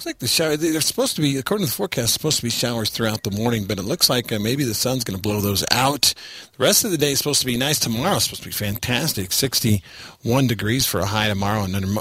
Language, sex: English, male